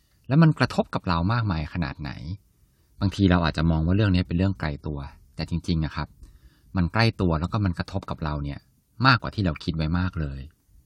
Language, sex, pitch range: Thai, male, 80-105 Hz